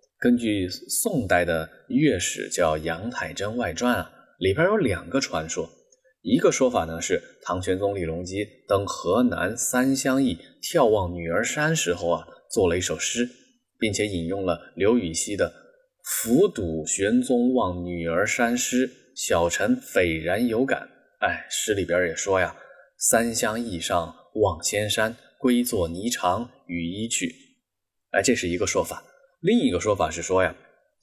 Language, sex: Chinese, male